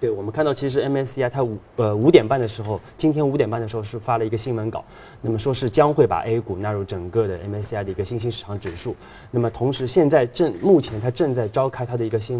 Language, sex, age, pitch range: Chinese, male, 20-39, 110-135 Hz